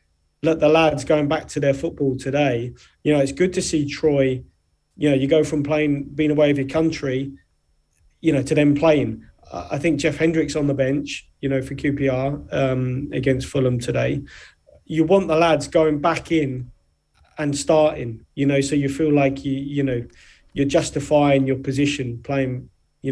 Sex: male